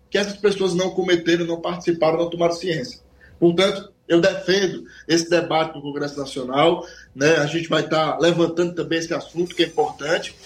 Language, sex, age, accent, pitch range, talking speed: Portuguese, male, 20-39, Brazilian, 160-190 Hz, 170 wpm